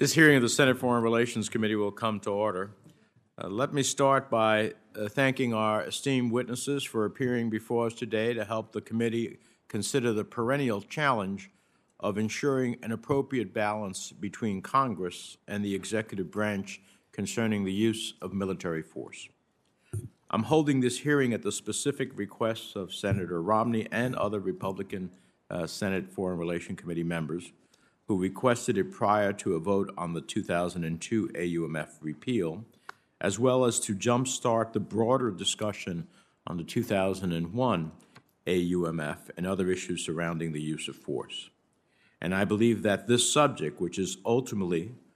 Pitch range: 95-120 Hz